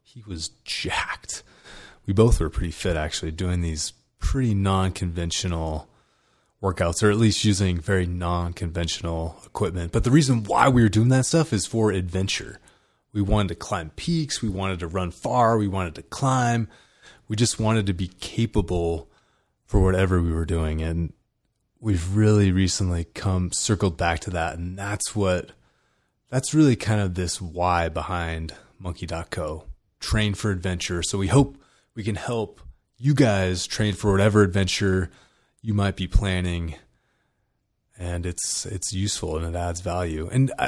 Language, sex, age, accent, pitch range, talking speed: English, male, 30-49, American, 85-110 Hz, 155 wpm